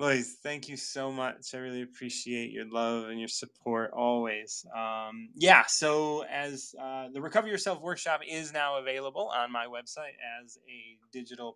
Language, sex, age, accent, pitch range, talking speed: English, male, 20-39, American, 105-135 Hz, 165 wpm